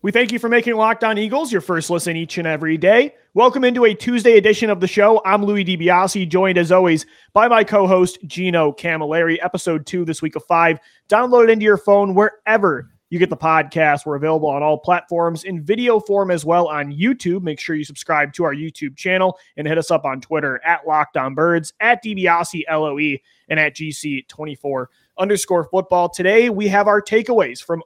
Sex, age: male, 30-49